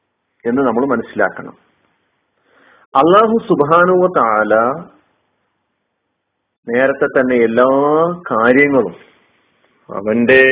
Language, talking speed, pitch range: Malayalam, 65 wpm, 130-170 Hz